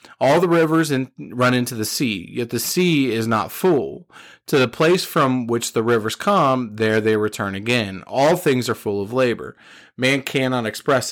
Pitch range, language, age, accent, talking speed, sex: 110-145 Hz, English, 30-49, American, 185 wpm, male